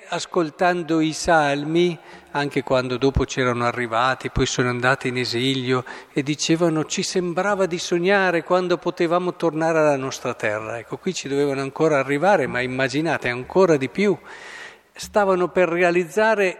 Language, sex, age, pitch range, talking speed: Italian, male, 50-69, 135-185 Hz, 145 wpm